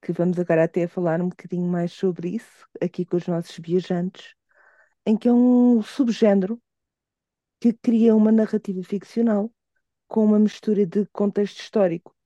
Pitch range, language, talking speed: 185-230 Hz, Portuguese, 150 wpm